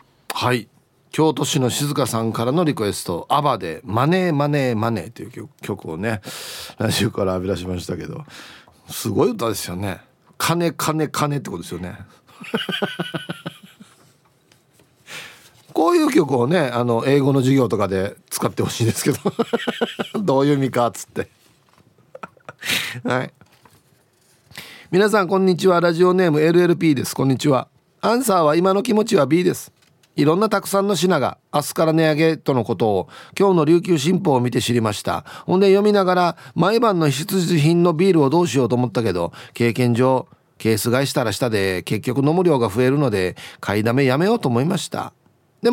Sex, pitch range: male, 120-180 Hz